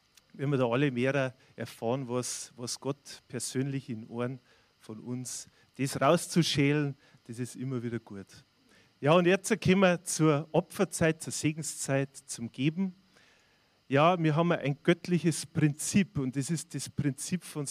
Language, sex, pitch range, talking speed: German, male, 130-160 Hz, 150 wpm